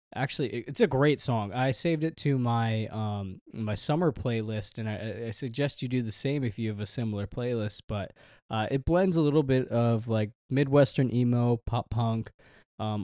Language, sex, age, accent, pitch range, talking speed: English, male, 20-39, American, 110-135 Hz, 195 wpm